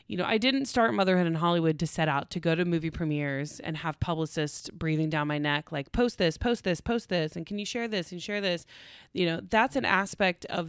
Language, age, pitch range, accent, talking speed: English, 30-49, 155-190 Hz, American, 245 wpm